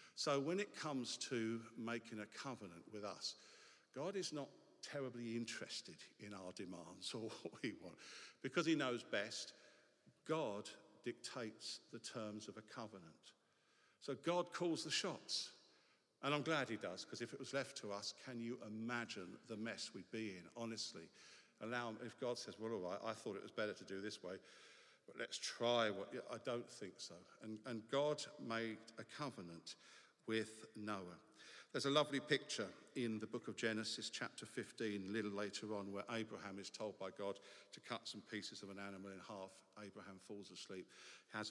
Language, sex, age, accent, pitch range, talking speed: English, male, 50-69, British, 105-120 Hz, 180 wpm